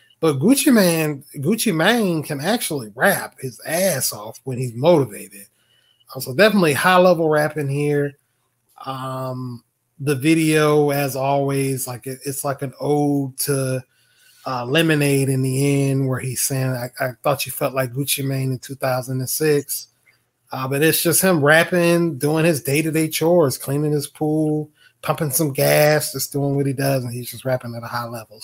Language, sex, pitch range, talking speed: English, male, 130-155 Hz, 165 wpm